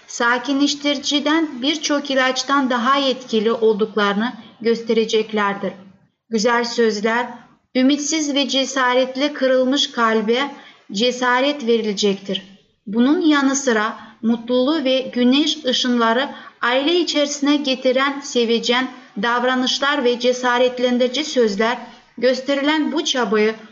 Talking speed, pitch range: 85 wpm, 225-270 Hz